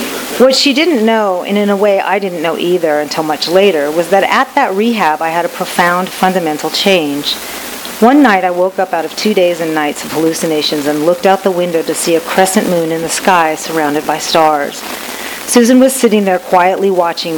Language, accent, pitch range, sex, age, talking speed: English, American, 160-205 Hz, female, 40-59, 210 wpm